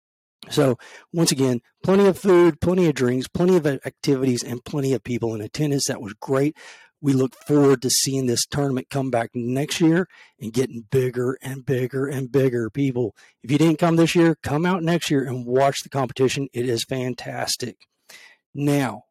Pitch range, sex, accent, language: 125-160 Hz, male, American, English